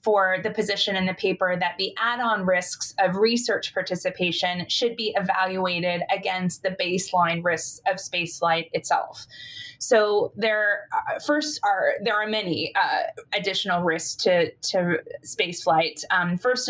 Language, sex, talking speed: English, female, 135 wpm